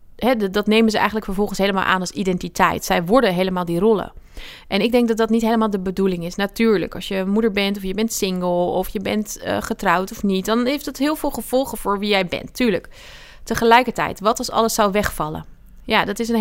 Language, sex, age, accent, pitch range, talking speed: Dutch, female, 30-49, Dutch, 185-230 Hz, 225 wpm